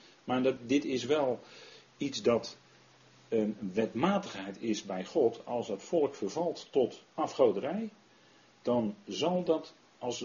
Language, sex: Dutch, male